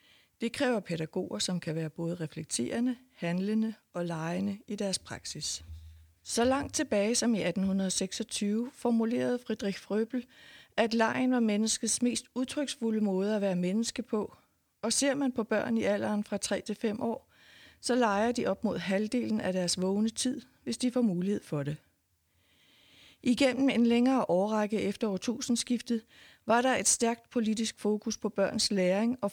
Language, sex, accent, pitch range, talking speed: Danish, female, native, 195-235 Hz, 160 wpm